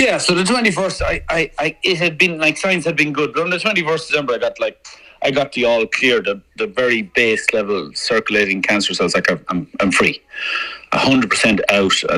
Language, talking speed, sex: English, 230 wpm, male